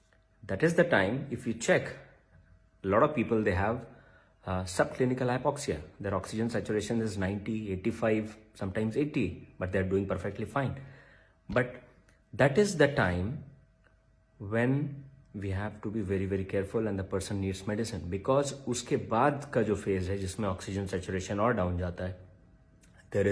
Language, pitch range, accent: Hindi, 95-115 Hz, native